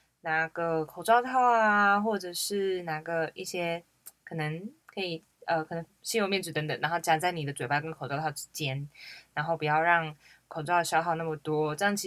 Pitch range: 160-210 Hz